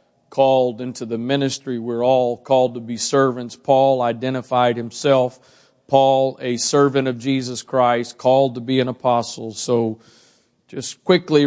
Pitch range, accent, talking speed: 120-140 Hz, American, 140 wpm